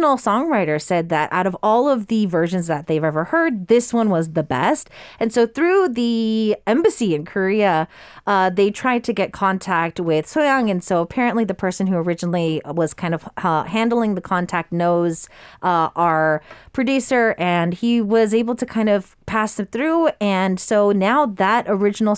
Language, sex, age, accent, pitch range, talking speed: English, female, 30-49, American, 170-245 Hz, 180 wpm